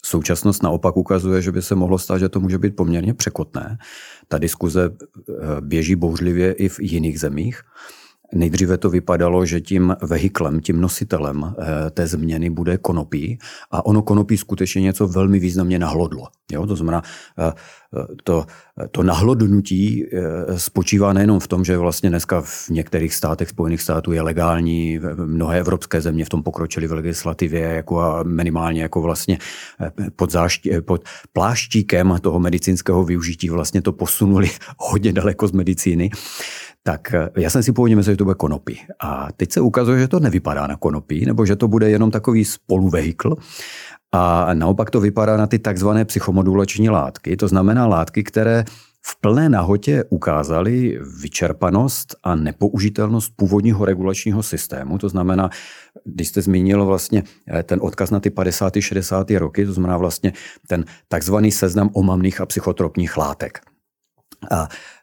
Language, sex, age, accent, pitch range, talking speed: Czech, male, 40-59, Slovak, 85-105 Hz, 145 wpm